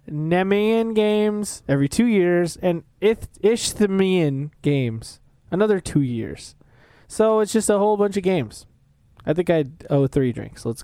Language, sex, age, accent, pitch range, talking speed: English, male, 20-39, American, 130-175 Hz, 150 wpm